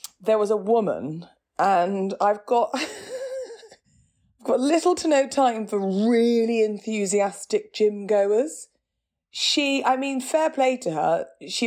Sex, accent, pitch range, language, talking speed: female, British, 180-235 Hz, English, 130 wpm